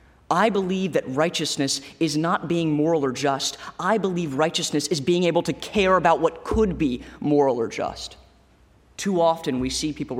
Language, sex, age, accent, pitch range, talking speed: English, male, 30-49, American, 125-155 Hz, 175 wpm